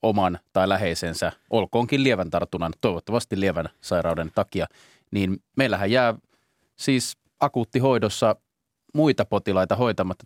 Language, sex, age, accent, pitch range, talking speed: Finnish, male, 30-49, native, 100-115 Hz, 105 wpm